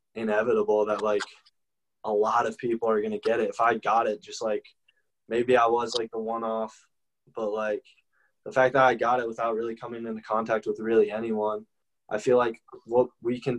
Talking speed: 205 wpm